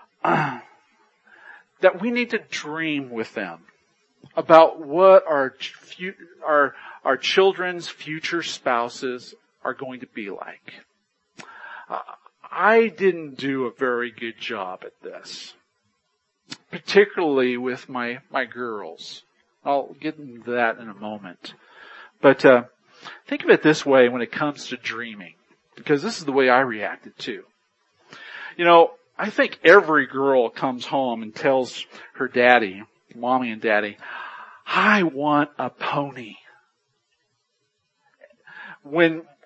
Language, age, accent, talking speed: English, 40-59, American, 125 wpm